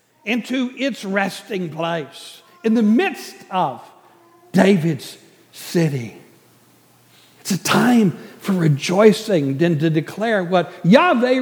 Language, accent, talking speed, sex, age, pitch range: English, American, 105 wpm, male, 60-79, 145-200 Hz